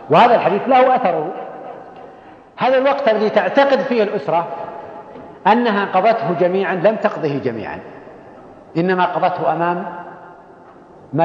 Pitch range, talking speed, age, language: 165-215 Hz, 105 wpm, 50-69, Arabic